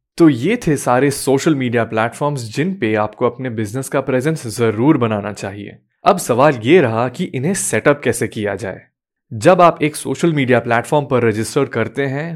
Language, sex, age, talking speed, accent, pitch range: Hindi, male, 10-29, 180 wpm, native, 115-150 Hz